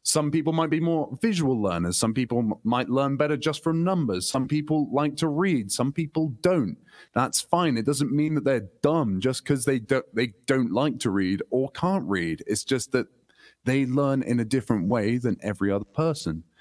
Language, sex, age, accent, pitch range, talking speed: English, male, 30-49, British, 110-155 Hz, 200 wpm